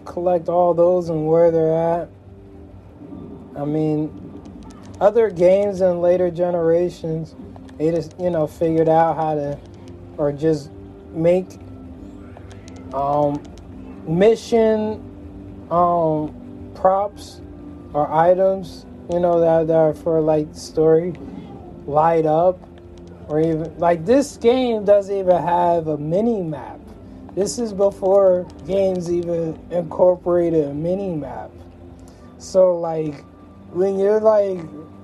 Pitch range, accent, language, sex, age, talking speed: 140-190 Hz, American, English, male, 20-39, 110 wpm